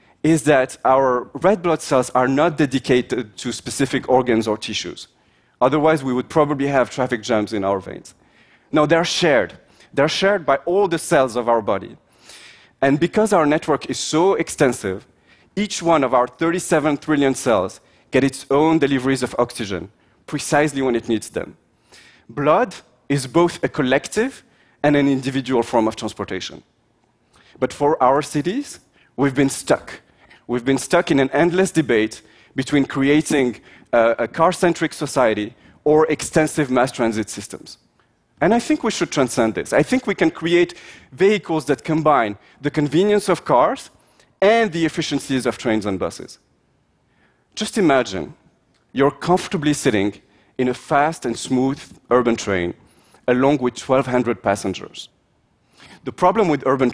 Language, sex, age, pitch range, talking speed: Russian, male, 30-49, 120-160 Hz, 150 wpm